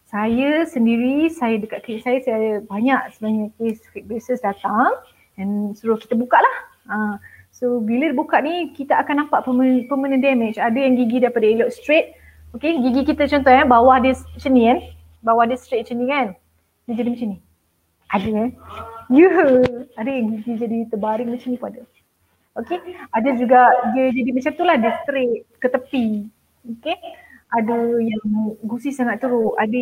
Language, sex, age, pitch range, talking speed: Malay, female, 20-39, 230-290 Hz, 180 wpm